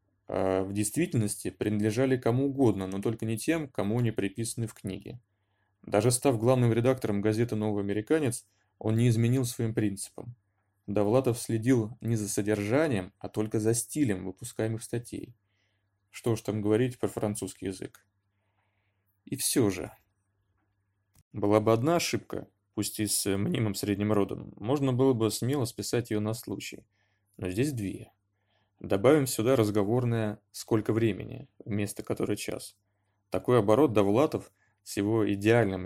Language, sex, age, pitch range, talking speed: Russian, male, 20-39, 100-120 Hz, 135 wpm